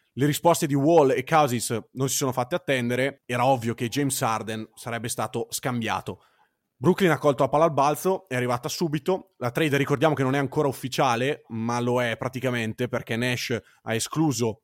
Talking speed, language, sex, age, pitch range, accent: 185 wpm, Italian, male, 30-49, 120-155 Hz, native